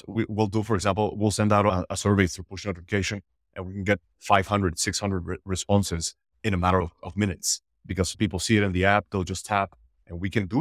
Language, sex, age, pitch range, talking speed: English, male, 30-49, 90-105 Hz, 225 wpm